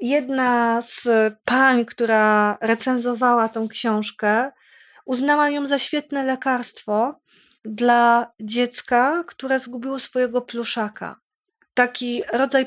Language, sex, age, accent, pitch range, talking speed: Polish, female, 30-49, native, 230-270 Hz, 95 wpm